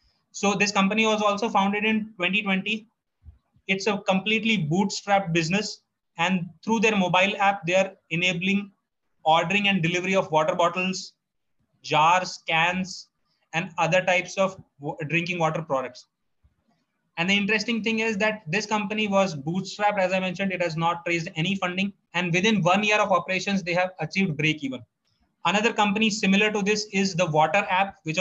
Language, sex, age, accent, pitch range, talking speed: English, male, 20-39, Indian, 175-200 Hz, 155 wpm